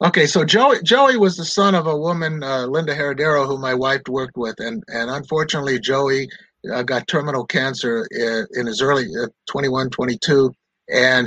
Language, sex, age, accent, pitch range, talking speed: English, male, 60-79, American, 130-165 Hz, 180 wpm